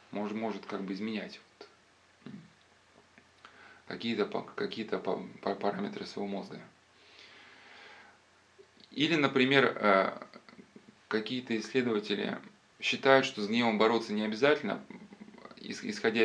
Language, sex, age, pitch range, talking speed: Russian, male, 20-39, 105-180 Hz, 80 wpm